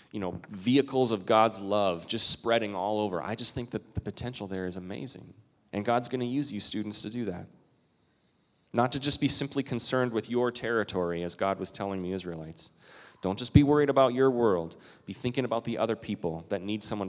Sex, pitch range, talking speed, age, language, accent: male, 100-140 Hz, 210 wpm, 30-49, English, American